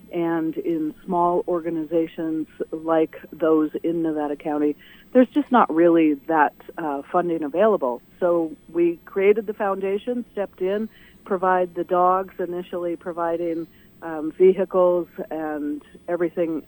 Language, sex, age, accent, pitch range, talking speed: English, female, 50-69, American, 155-190 Hz, 120 wpm